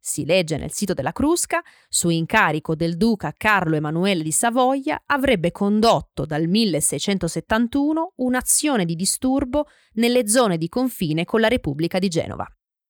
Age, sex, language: 20-39, female, Italian